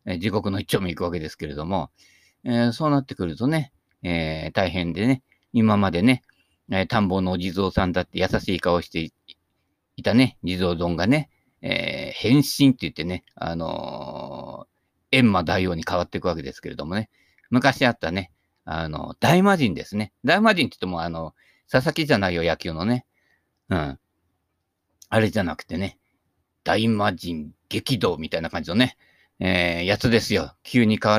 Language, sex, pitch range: Japanese, male, 90-125 Hz